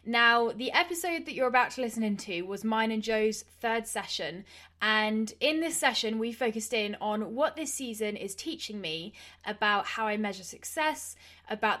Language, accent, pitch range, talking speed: English, British, 210-260 Hz, 180 wpm